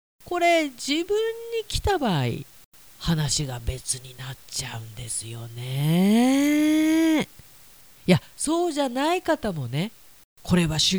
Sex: female